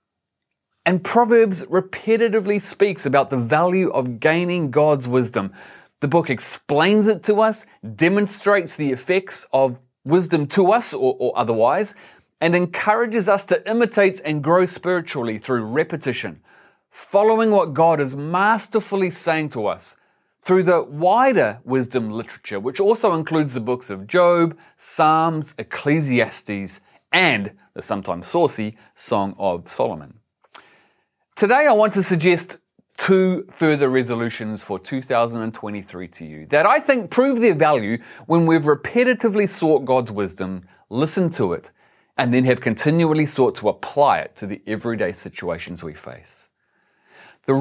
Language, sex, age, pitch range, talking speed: English, male, 30-49, 120-190 Hz, 135 wpm